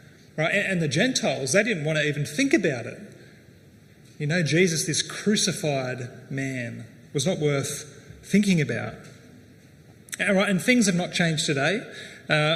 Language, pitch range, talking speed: English, 140-180 Hz, 150 wpm